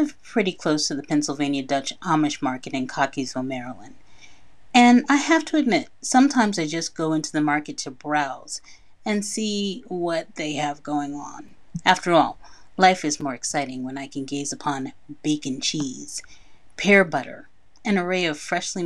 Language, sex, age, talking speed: English, female, 40-59, 160 wpm